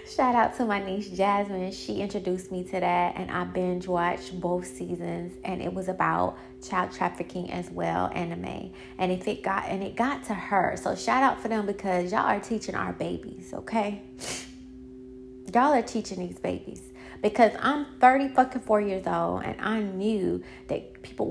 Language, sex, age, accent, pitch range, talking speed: English, female, 20-39, American, 165-210 Hz, 180 wpm